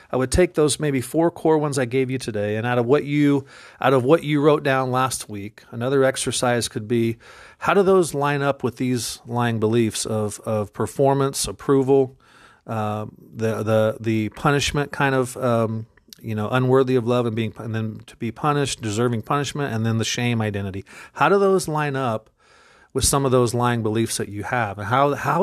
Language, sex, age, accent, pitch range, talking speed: English, male, 40-59, American, 115-150 Hz, 205 wpm